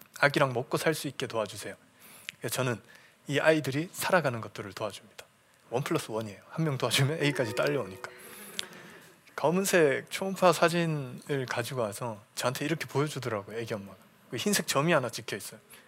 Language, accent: Korean, native